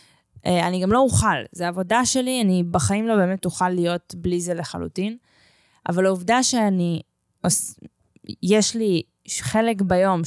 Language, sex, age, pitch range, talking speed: Hebrew, female, 20-39, 175-220 Hz, 105 wpm